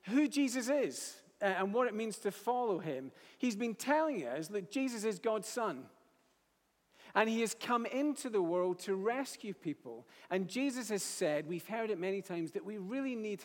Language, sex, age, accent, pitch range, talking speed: English, male, 40-59, British, 170-225 Hz, 190 wpm